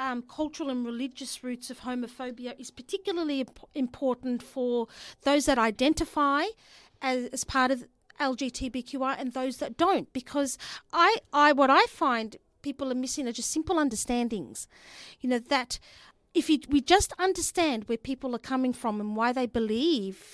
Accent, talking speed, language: Australian, 160 wpm, English